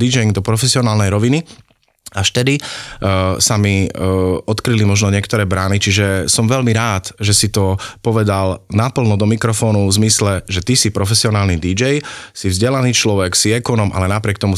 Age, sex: 30-49, male